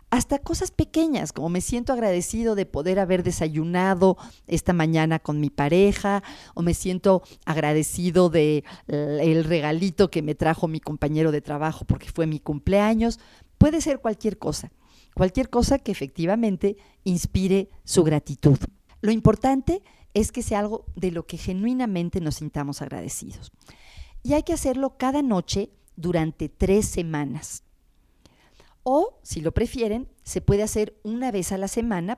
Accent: Mexican